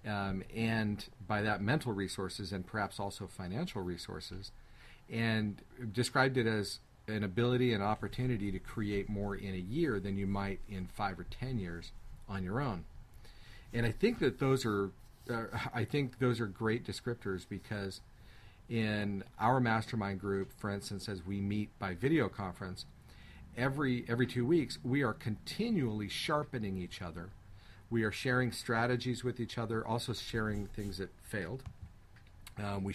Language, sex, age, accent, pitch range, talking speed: English, male, 40-59, American, 100-120 Hz, 155 wpm